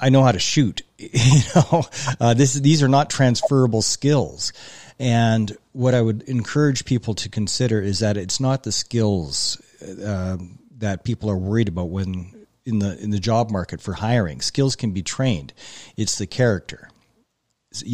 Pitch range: 100-130 Hz